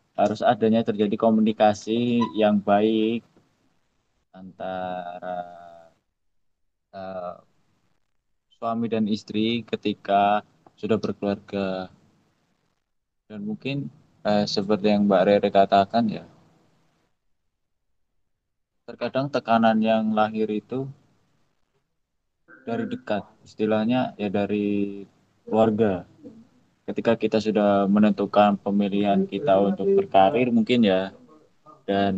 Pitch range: 100-115 Hz